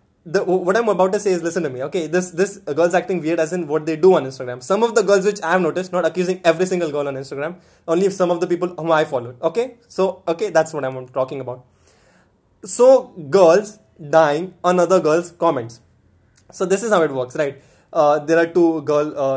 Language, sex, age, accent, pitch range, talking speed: English, male, 20-39, Indian, 155-195 Hz, 230 wpm